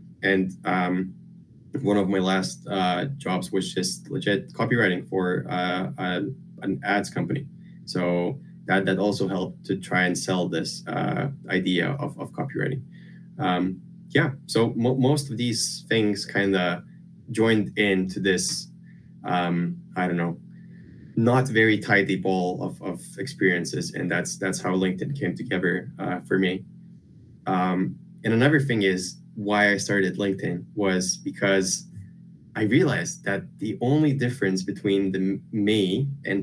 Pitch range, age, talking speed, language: 95-140 Hz, 20-39, 145 wpm, English